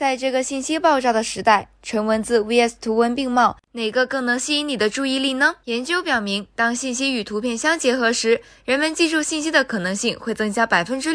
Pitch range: 220-270 Hz